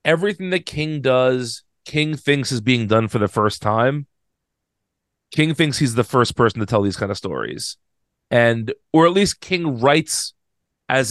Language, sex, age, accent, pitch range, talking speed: English, male, 30-49, American, 110-130 Hz, 175 wpm